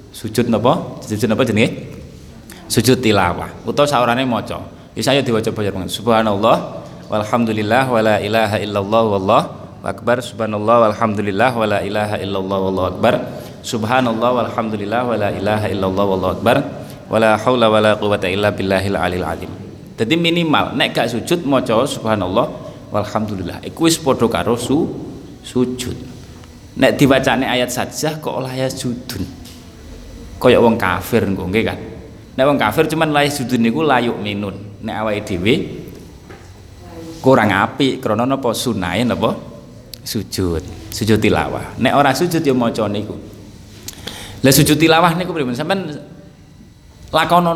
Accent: native